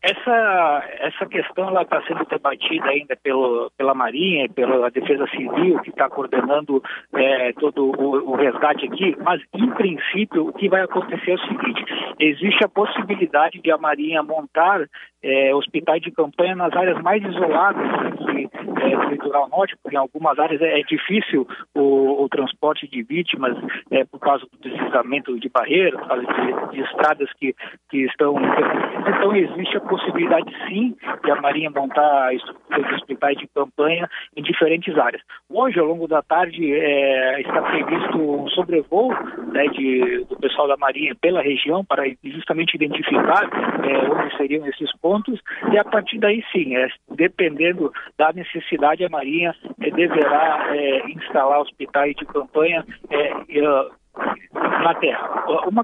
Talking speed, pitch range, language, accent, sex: 155 wpm, 140-190 Hz, Portuguese, Brazilian, male